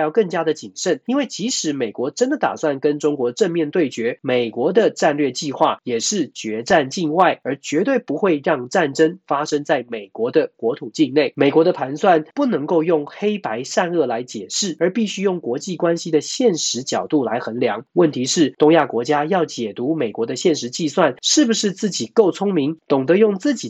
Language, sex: Chinese, male